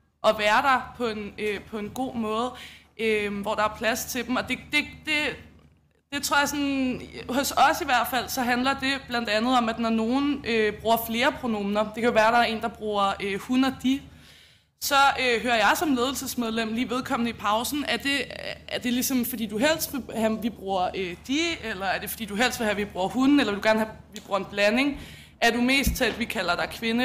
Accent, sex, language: native, female, Danish